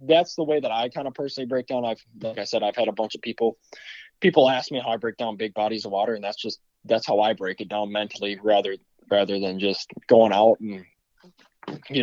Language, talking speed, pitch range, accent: English, 245 wpm, 110-130 Hz, American